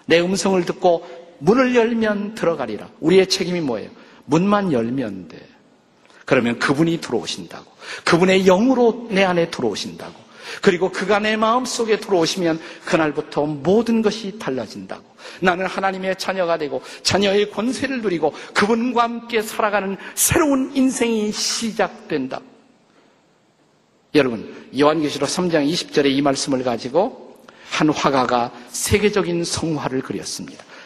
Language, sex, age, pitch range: Korean, male, 50-69, 145-205 Hz